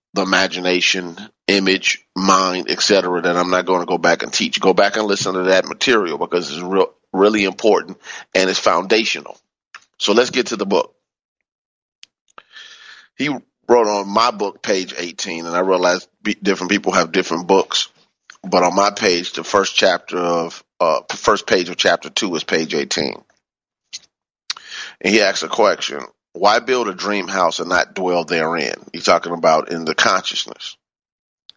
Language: English